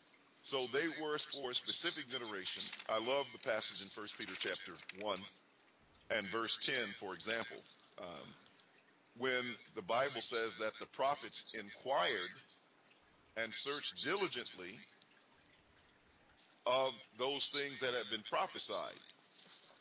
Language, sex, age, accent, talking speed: English, male, 50-69, American, 120 wpm